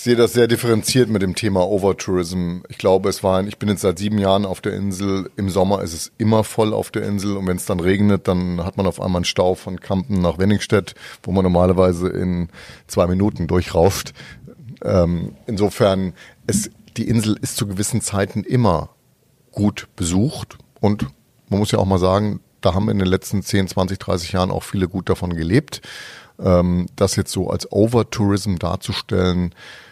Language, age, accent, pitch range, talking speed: German, 30-49, German, 90-105 Hz, 190 wpm